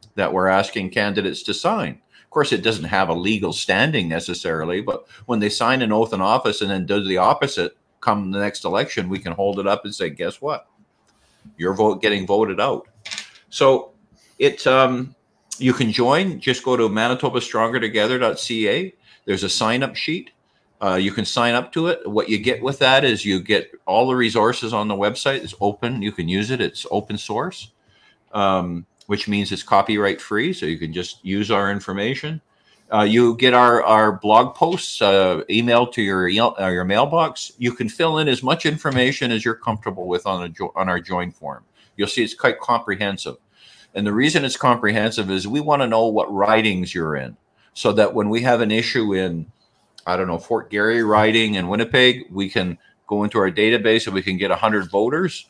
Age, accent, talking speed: 50-69, American, 195 wpm